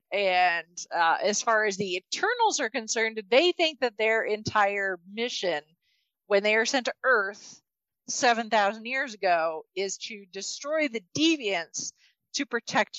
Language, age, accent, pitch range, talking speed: English, 40-59, American, 185-230 Hz, 145 wpm